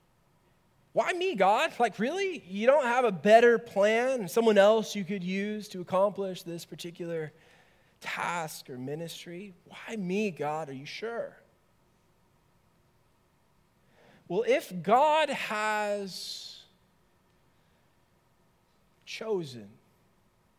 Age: 20-39